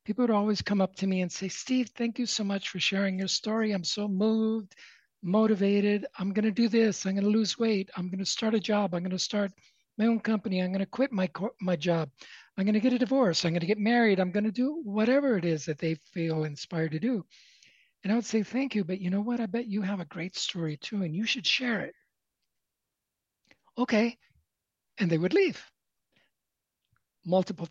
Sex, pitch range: male, 165-220 Hz